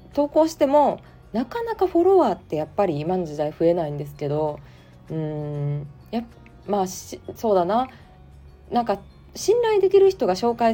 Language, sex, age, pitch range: Japanese, female, 20-39, 155-255 Hz